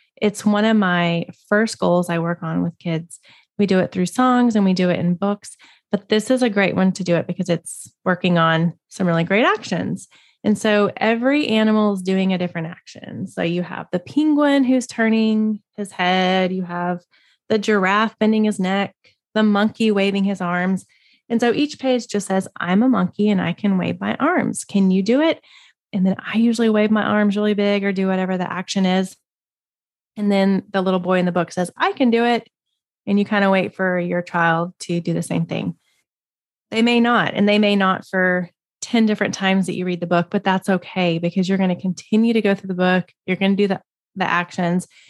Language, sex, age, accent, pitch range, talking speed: English, female, 20-39, American, 180-215 Hz, 220 wpm